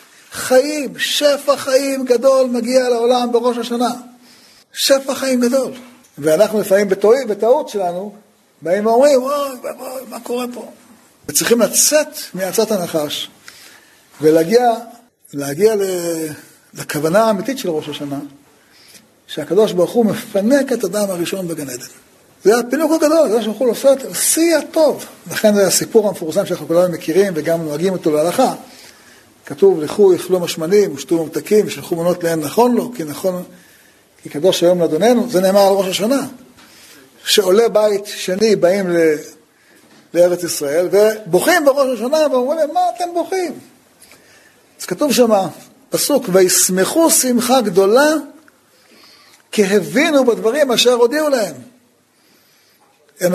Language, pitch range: Hebrew, 180-265 Hz